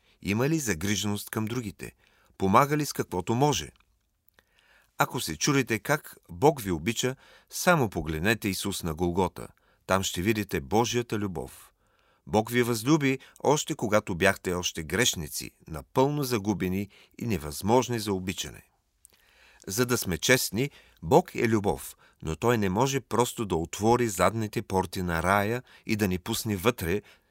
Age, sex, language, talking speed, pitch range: 40-59, male, Bulgarian, 140 wpm, 90-125 Hz